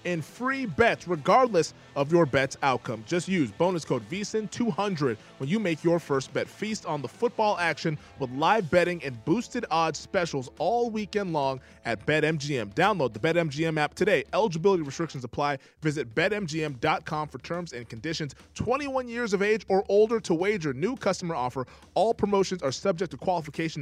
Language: English